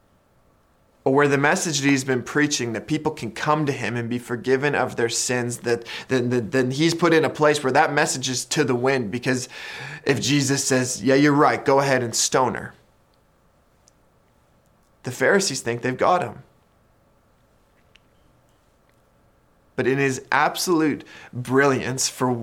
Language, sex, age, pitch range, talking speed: English, male, 20-39, 125-145 Hz, 165 wpm